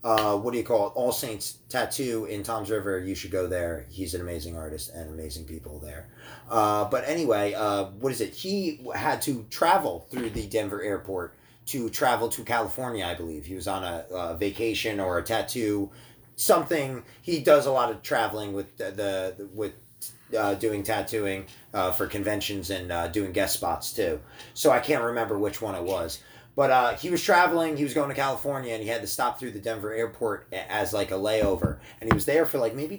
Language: English